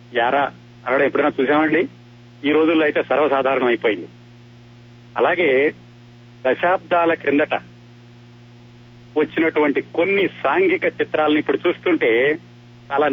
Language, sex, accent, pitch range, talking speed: Telugu, male, native, 120-155 Hz, 85 wpm